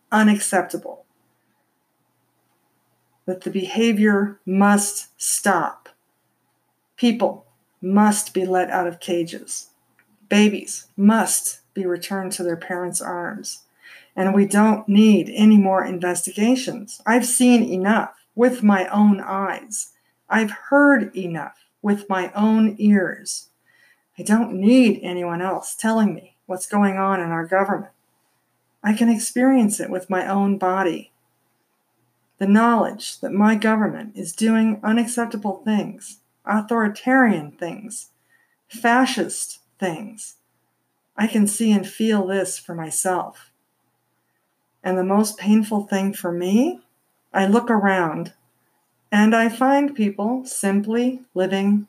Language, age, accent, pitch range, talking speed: English, 50-69, American, 185-225 Hz, 115 wpm